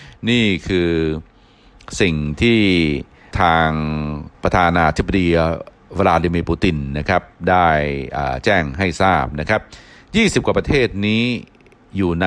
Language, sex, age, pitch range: Thai, male, 60-79, 75-105 Hz